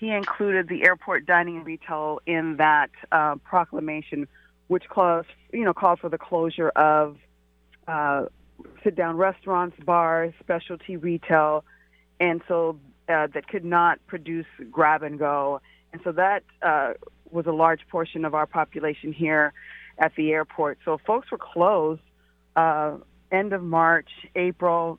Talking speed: 145 wpm